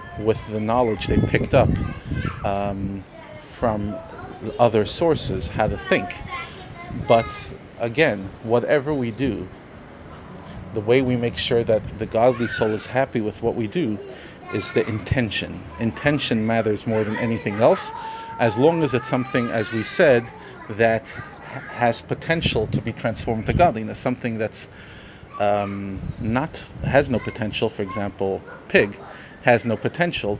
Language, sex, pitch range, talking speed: English, male, 105-125 Hz, 140 wpm